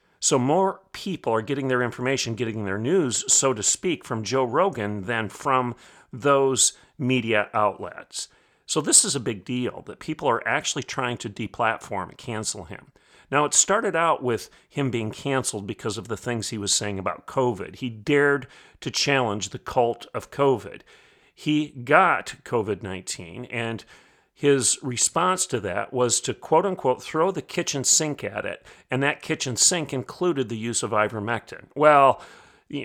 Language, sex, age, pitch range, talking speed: English, male, 40-59, 110-135 Hz, 165 wpm